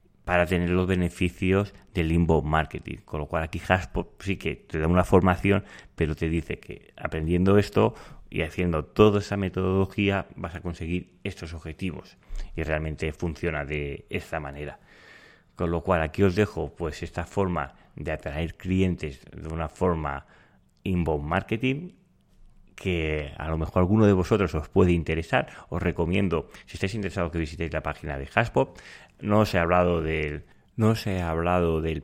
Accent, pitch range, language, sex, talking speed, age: Spanish, 80-95 Hz, Spanish, male, 155 wpm, 30-49